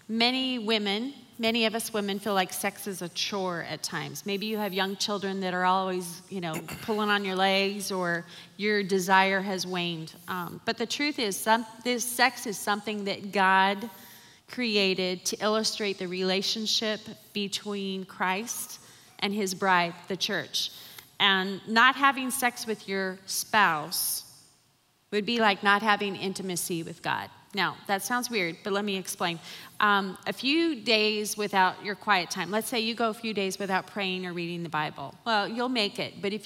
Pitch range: 185-220 Hz